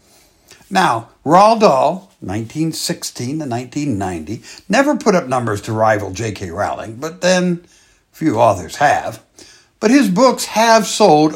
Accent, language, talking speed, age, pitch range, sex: American, English, 130 wpm, 60-79, 125-185 Hz, male